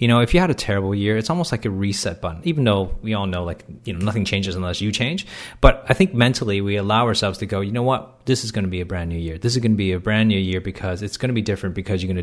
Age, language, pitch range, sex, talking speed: 30-49, English, 95-120 Hz, male, 325 wpm